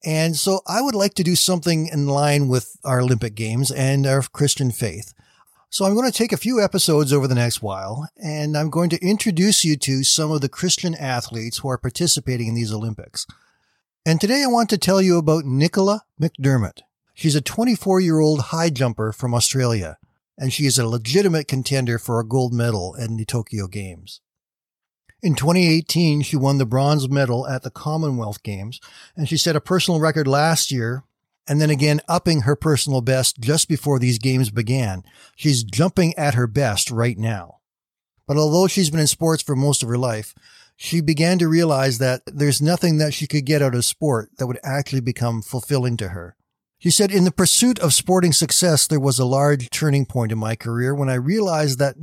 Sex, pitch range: male, 125-165 Hz